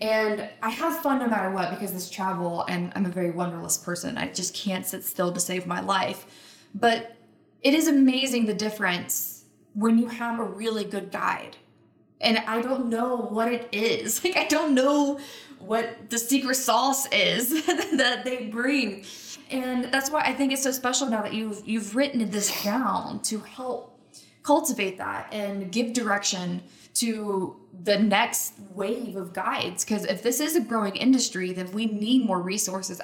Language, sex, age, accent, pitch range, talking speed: English, female, 20-39, American, 195-245 Hz, 175 wpm